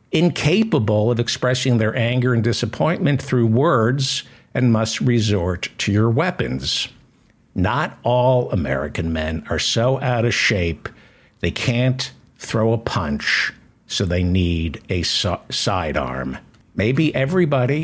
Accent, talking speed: American, 125 wpm